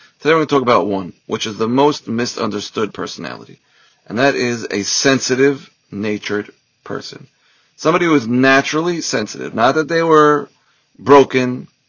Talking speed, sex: 150 wpm, male